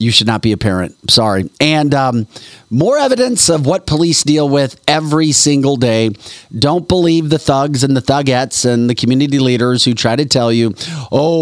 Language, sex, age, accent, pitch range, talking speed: English, male, 40-59, American, 105-140 Hz, 190 wpm